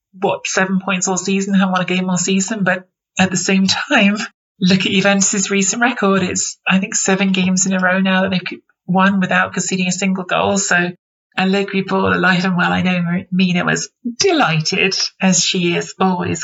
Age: 30-49